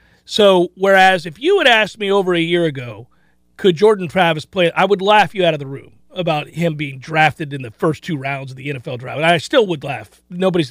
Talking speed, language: 235 wpm, English